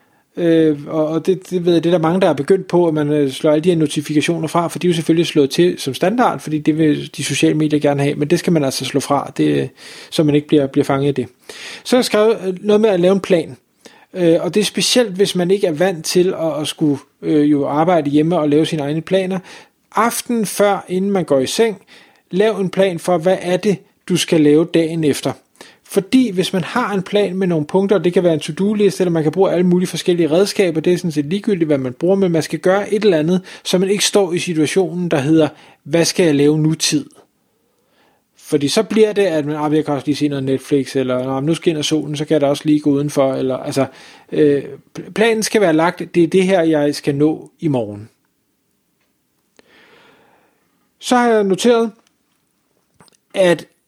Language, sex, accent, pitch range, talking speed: Danish, male, native, 150-190 Hz, 225 wpm